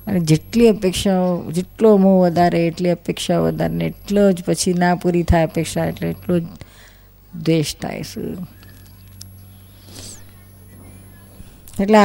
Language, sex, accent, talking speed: Gujarati, female, native, 90 wpm